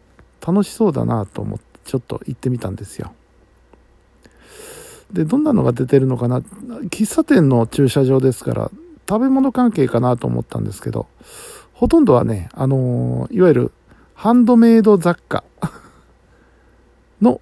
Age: 50-69